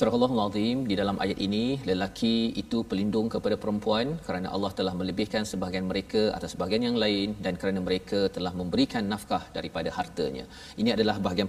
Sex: male